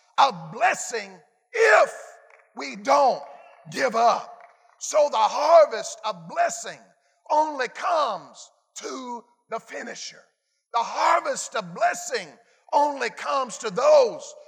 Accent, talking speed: American, 105 wpm